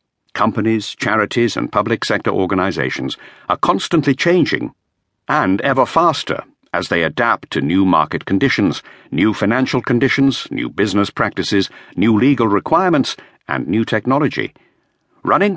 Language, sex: English, male